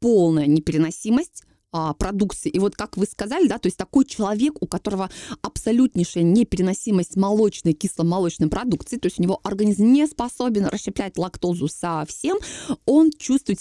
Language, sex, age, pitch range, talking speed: Russian, female, 20-39, 185-245 Hz, 130 wpm